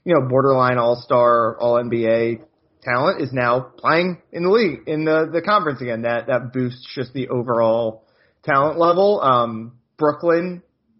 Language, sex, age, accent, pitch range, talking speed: English, male, 30-49, American, 115-155 Hz, 145 wpm